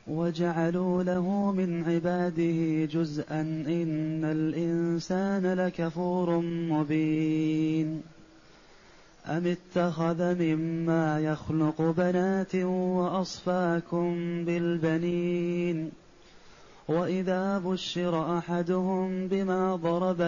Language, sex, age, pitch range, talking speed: Arabic, male, 30-49, 170-190 Hz, 60 wpm